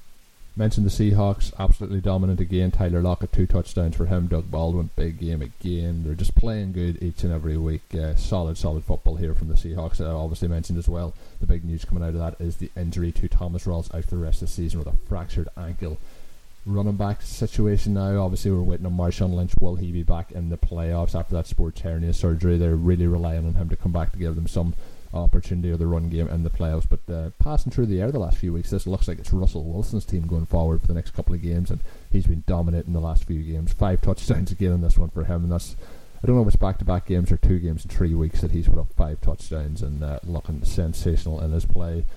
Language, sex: English, male